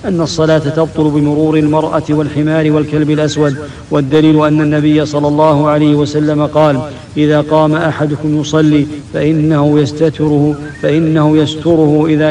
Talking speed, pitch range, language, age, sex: 120 wpm, 150-155 Hz, English, 50-69, male